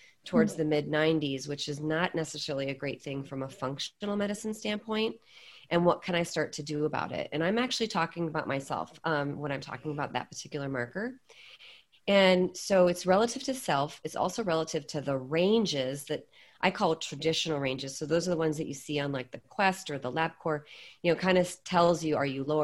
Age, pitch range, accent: 30-49, 145-175 Hz, American